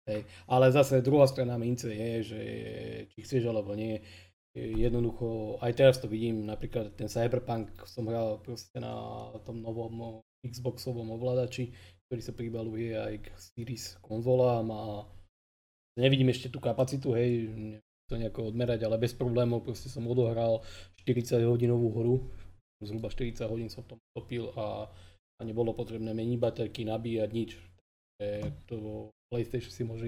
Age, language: 20-39, Slovak